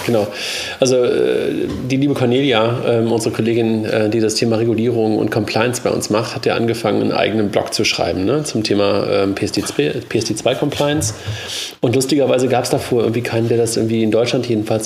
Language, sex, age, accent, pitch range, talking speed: German, male, 40-59, German, 110-125 Hz, 180 wpm